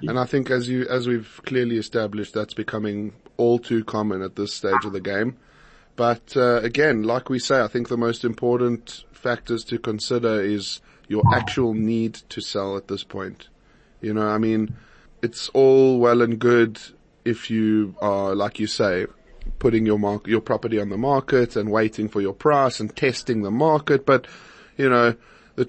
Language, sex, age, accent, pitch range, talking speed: English, male, 20-39, Australian, 110-125 Hz, 185 wpm